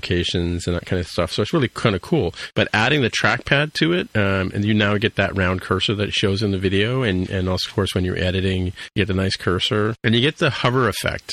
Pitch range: 95-115 Hz